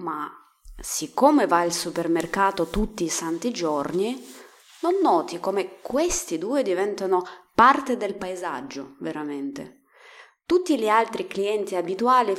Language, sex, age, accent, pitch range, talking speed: Italian, female, 20-39, native, 175-280 Hz, 115 wpm